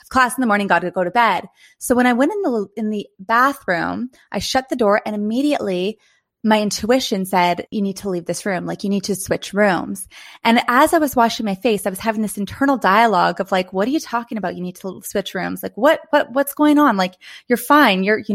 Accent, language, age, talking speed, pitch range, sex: American, English, 20-39, 245 wpm, 190-240 Hz, female